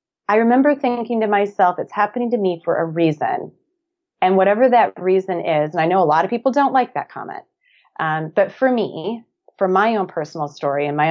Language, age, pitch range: English, 30-49, 150-220 Hz